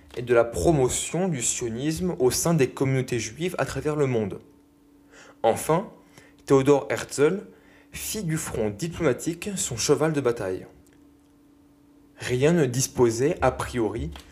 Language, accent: French, French